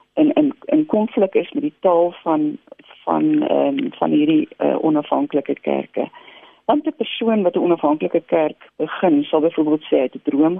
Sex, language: female, Dutch